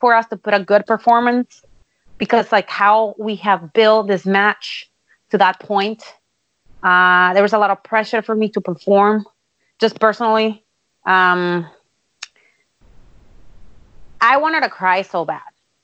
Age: 30-49